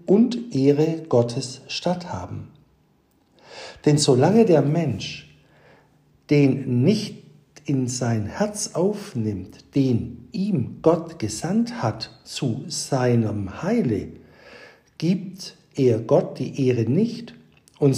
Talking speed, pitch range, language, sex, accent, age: 100 wpm, 130-195 Hz, German, male, German, 60-79